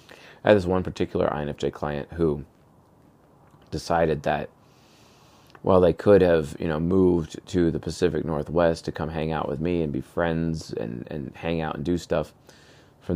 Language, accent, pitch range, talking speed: English, American, 75-85 Hz, 180 wpm